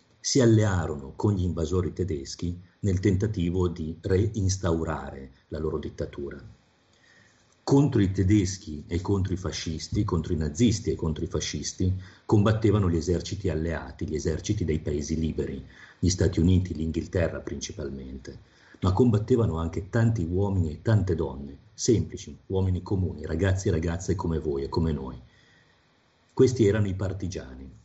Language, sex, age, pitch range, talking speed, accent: Italian, male, 40-59, 80-105 Hz, 140 wpm, native